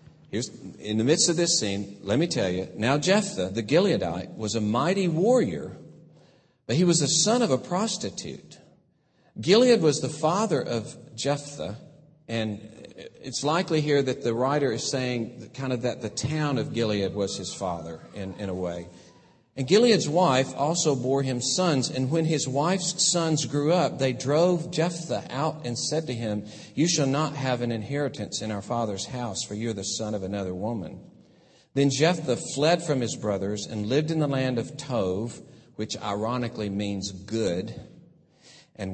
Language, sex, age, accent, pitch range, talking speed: English, male, 50-69, American, 110-155 Hz, 175 wpm